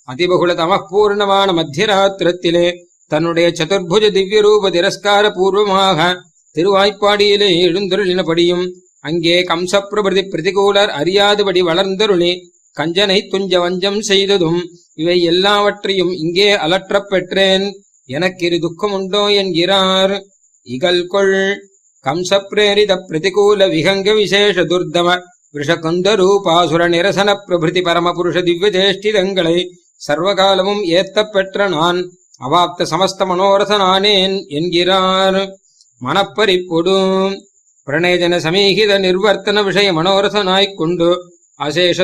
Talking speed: 70 wpm